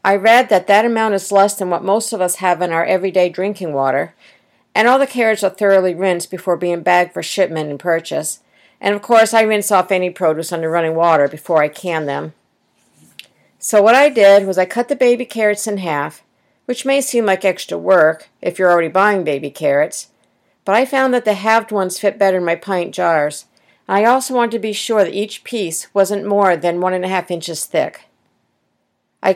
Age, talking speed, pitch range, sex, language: 50-69, 210 wpm, 170-210 Hz, female, English